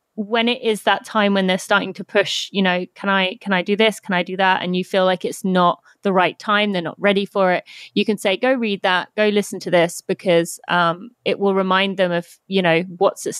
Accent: British